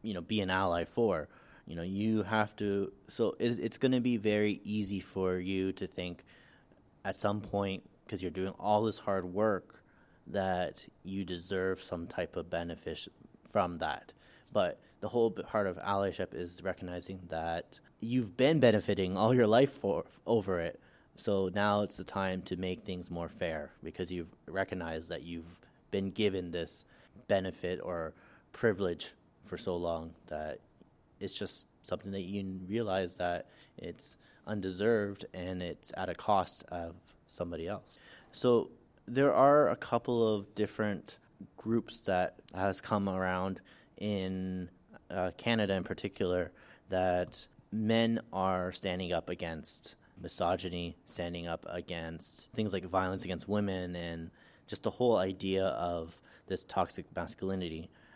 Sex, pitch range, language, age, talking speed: male, 90-105 Hz, English, 20-39, 150 wpm